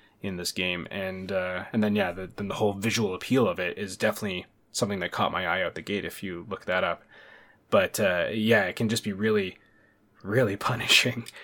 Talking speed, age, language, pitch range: 210 wpm, 20-39, English, 100-115 Hz